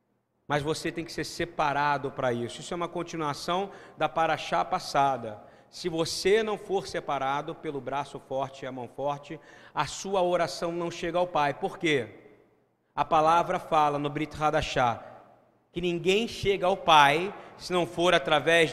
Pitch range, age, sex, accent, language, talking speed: 145-200 Hz, 40-59, male, Brazilian, Portuguese, 165 wpm